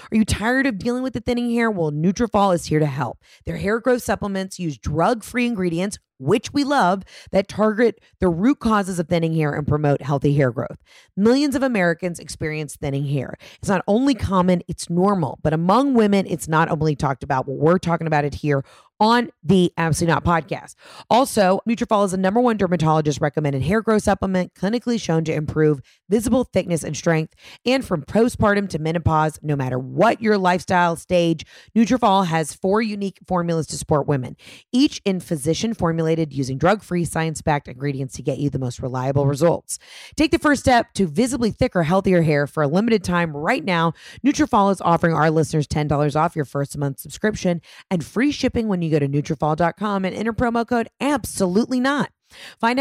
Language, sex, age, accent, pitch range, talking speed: English, female, 30-49, American, 155-225 Hz, 185 wpm